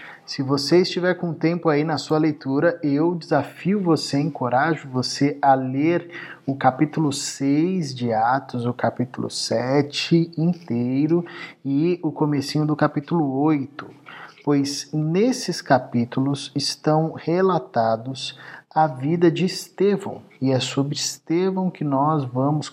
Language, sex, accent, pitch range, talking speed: Portuguese, male, Brazilian, 130-160 Hz, 125 wpm